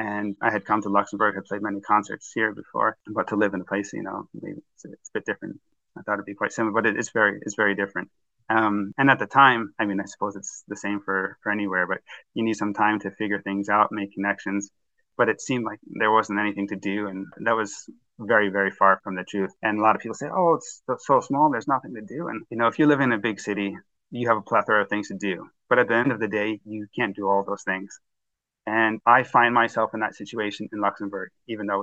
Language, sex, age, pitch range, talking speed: English, male, 20-39, 100-110 Hz, 260 wpm